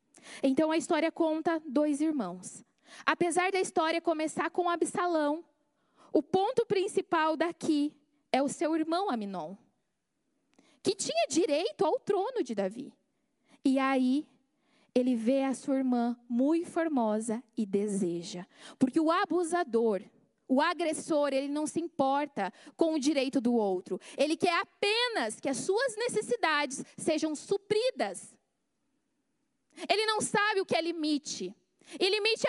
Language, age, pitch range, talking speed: Portuguese, 20-39, 280-405 Hz, 130 wpm